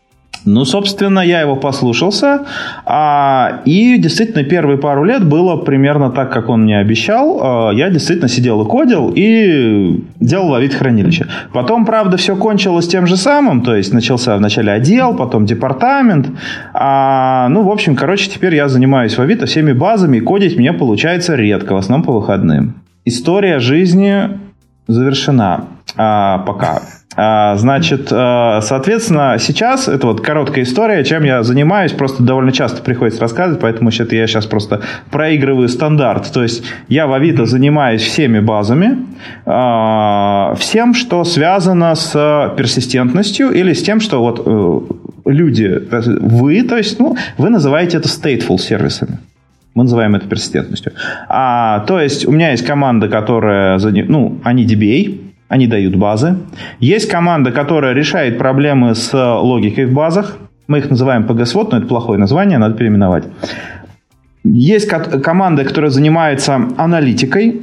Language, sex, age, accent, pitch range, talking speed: Russian, male, 30-49, native, 115-175 Hz, 140 wpm